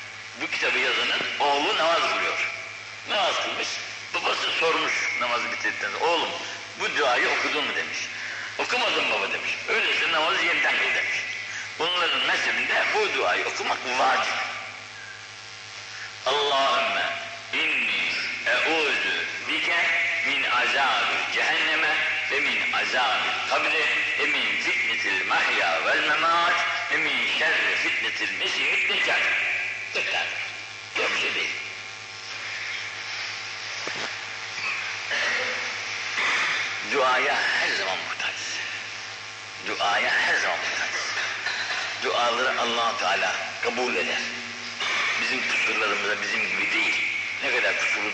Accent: native